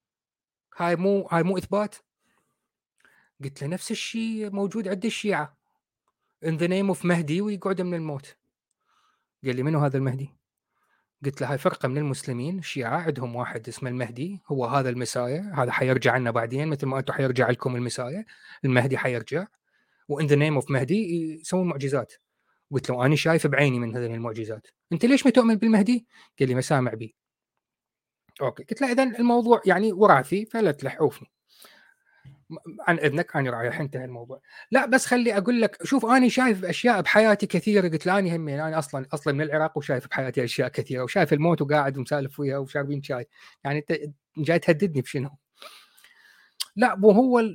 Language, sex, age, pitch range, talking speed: Arabic, male, 30-49, 140-210 Hz, 165 wpm